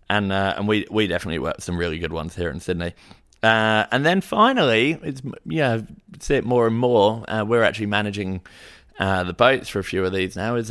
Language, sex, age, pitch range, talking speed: English, male, 20-39, 90-110 Hz, 220 wpm